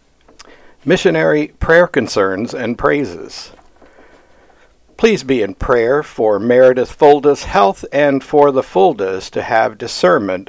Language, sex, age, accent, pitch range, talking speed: English, male, 60-79, American, 110-135 Hz, 115 wpm